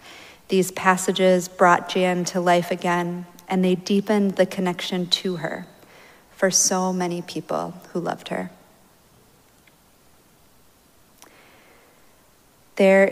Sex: female